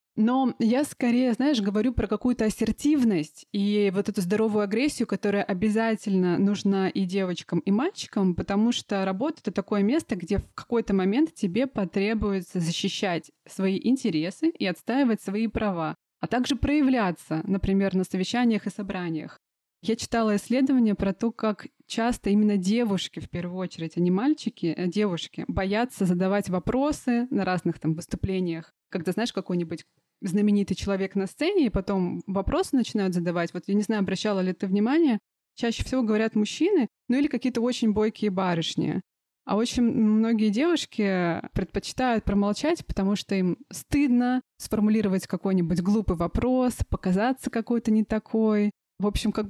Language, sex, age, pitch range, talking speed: Russian, female, 20-39, 190-235 Hz, 150 wpm